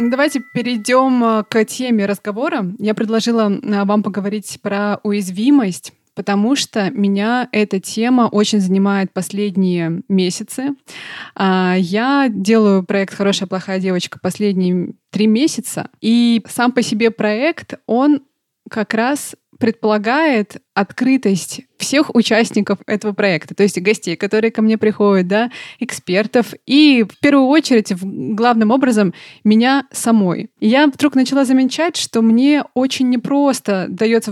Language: Russian